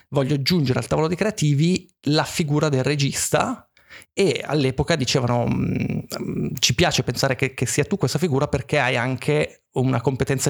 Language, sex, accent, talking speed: Italian, male, native, 165 wpm